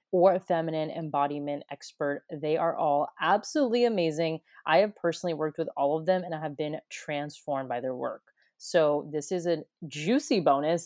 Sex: female